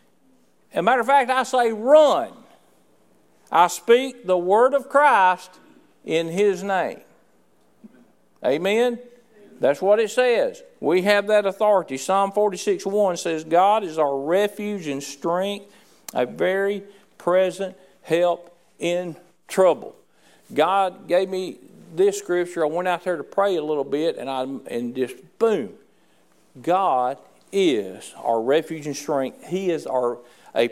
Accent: American